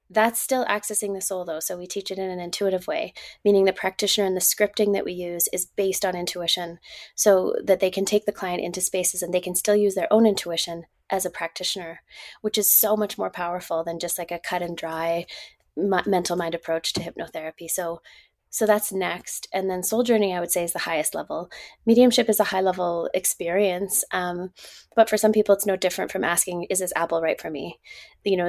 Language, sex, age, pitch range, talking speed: English, female, 20-39, 175-200 Hz, 220 wpm